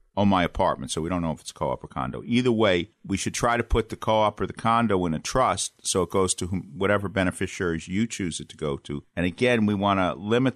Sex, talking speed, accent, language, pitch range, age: male, 260 wpm, American, English, 90-115 Hz, 50-69